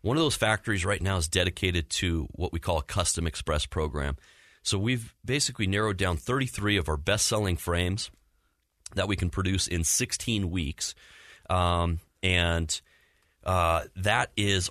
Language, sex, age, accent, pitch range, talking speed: English, male, 30-49, American, 80-95 Hz, 155 wpm